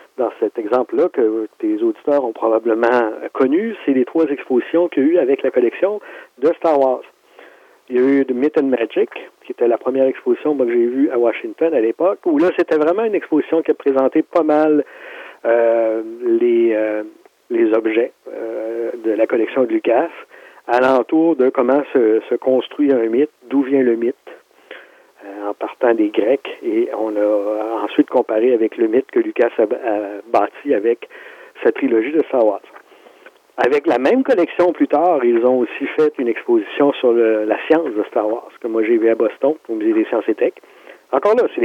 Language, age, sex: French, 50-69, male